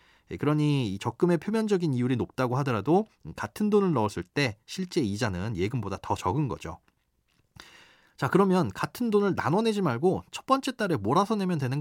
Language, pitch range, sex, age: Korean, 120-175 Hz, male, 30-49